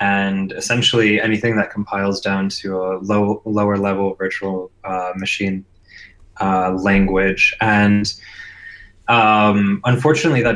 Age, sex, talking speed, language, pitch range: 20-39, male, 110 wpm, English, 100-110 Hz